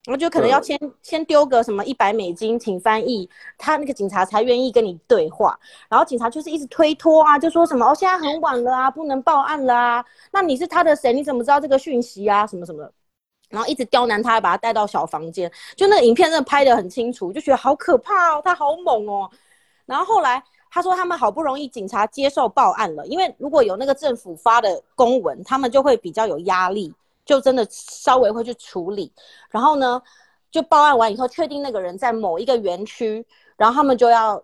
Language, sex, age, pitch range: Chinese, female, 30-49, 210-280 Hz